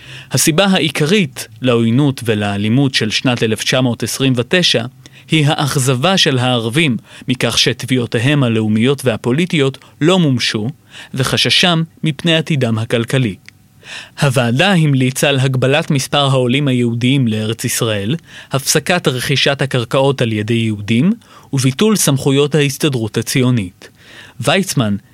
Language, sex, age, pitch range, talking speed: Hebrew, male, 30-49, 120-155 Hz, 100 wpm